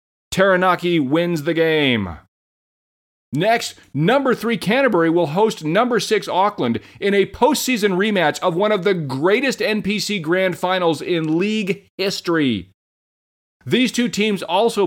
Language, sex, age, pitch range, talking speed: English, male, 40-59, 140-210 Hz, 130 wpm